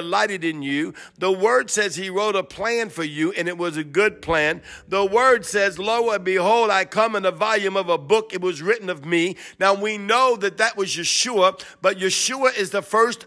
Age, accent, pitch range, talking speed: 50-69, American, 190-235 Hz, 220 wpm